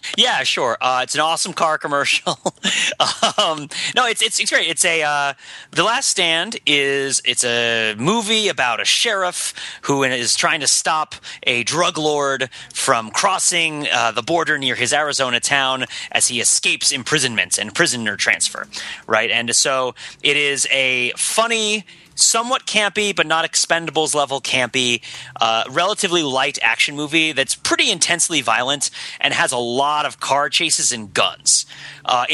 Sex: male